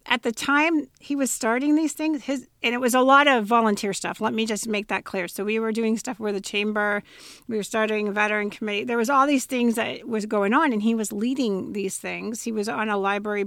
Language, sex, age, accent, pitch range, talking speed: English, female, 40-59, American, 205-265 Hz, 250 wpm